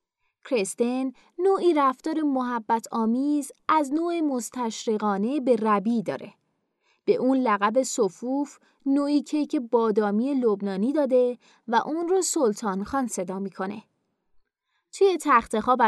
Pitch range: 220-300 Hz